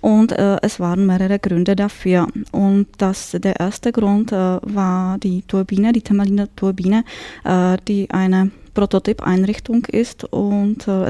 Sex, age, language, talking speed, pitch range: female, 20-39, German, 140 wpm, 190-220 Hz